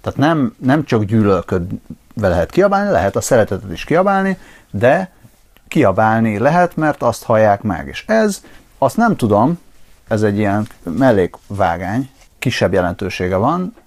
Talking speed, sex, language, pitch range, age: 135 wpm, male, Hungarian, 95-130 Hz, 30-49